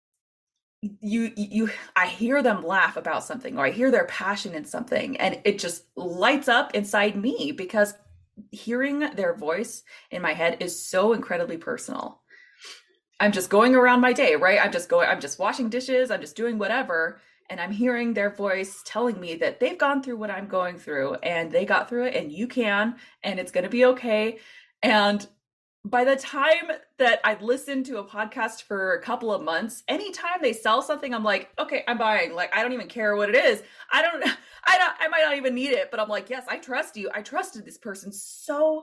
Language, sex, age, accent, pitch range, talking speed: English, female, 20-39, American, 205-280 Hz, 210 wpm